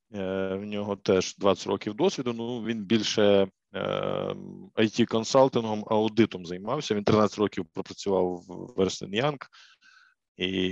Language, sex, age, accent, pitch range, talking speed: Ukrainian, male, 20-39, native, 95-115 Hz, 105 wpm